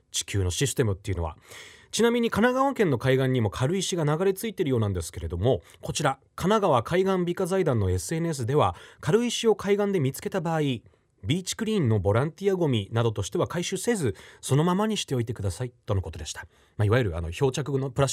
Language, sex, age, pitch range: Japanese, male, 30-49, 105-175 Hz